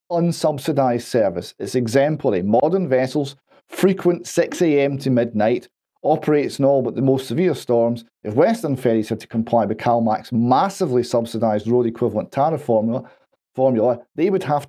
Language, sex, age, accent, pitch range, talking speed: English, male, 40-59, British, 125-160 Hz, 145 wpm